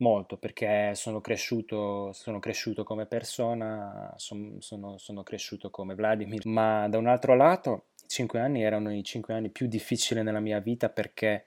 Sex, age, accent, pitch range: male, 20-39, native, 105-130 Hz